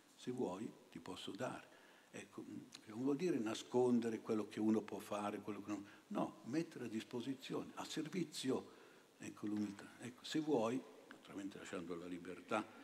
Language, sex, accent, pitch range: Italian, male, native, 100-130 Hz